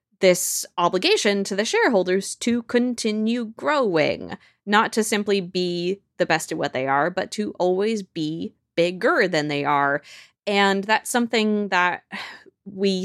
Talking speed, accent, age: 145 wpm, American, 20-39